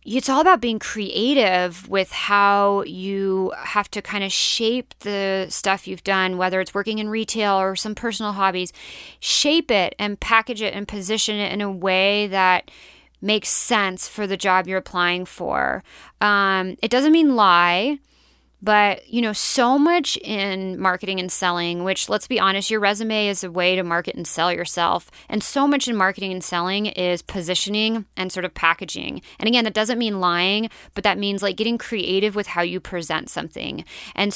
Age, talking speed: 30-49, 185 wpm